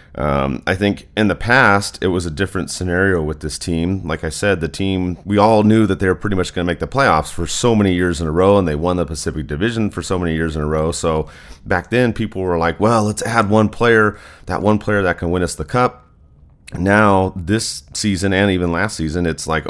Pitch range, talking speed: 80-105 Hz, 245 wpm